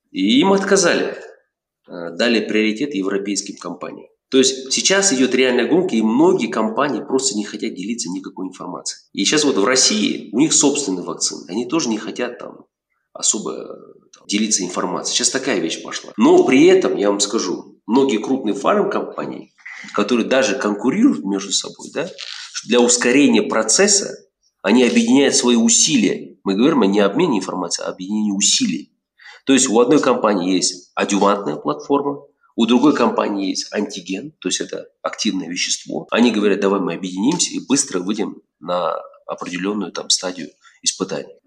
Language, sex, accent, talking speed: Russian, male, native, 150 wpm